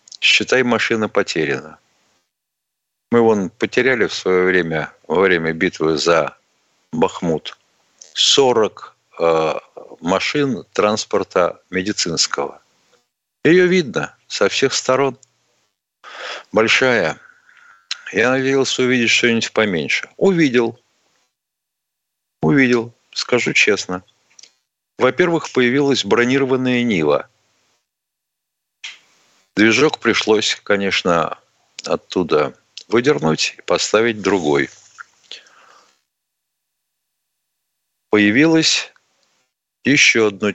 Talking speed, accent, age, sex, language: 75 wpm, native, 50-69, male, Russian